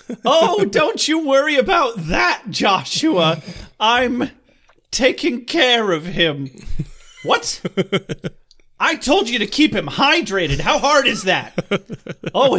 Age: 30-49